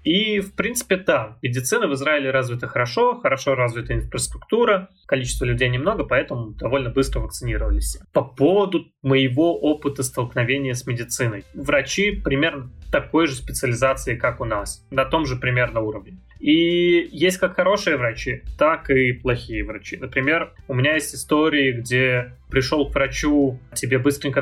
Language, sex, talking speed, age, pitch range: Russian, male, 145 wpm, 20-39, 125-150 Hz